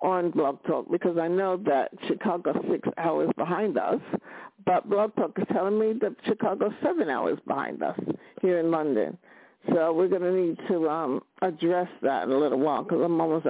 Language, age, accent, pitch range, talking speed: English, 60-79, American, 170-270 Hz, 200 wpm